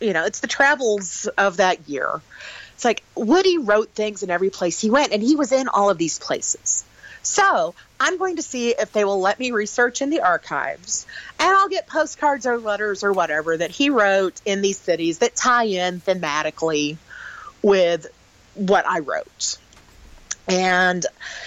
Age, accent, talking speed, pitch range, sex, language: 40-59, American, 175 wpm, 180-240 Hz, female, English